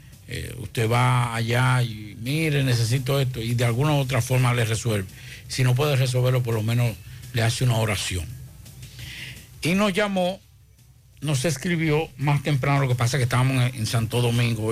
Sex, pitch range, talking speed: male, 120-140 Hz, 180 wpm